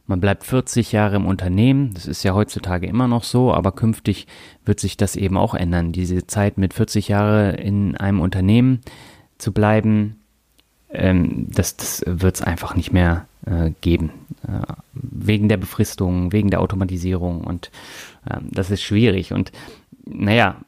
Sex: male